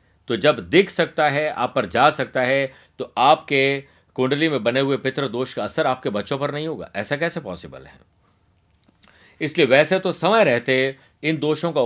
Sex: male